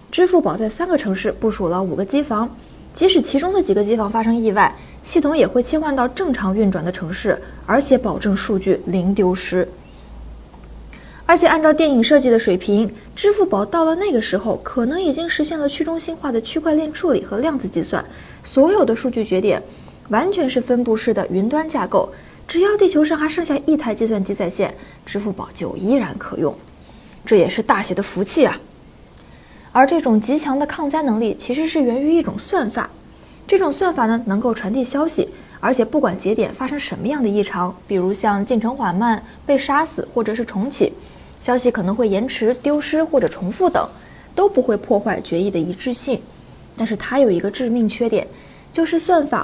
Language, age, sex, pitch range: Chinese, 20-39, female, 205-310 Hz